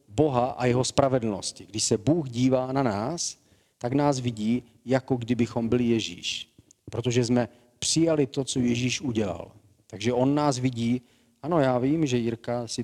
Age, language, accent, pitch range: 40-59, Czech, native, 110-135 Hz